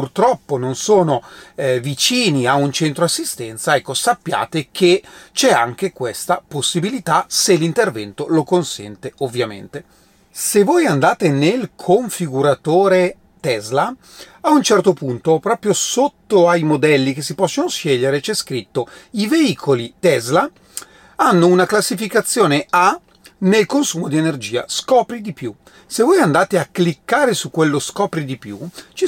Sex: male